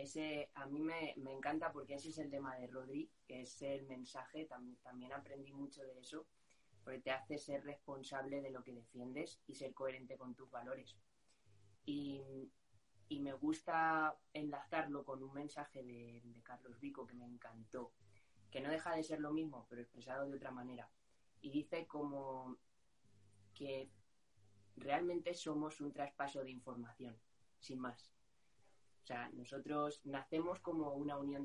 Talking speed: 160 wpm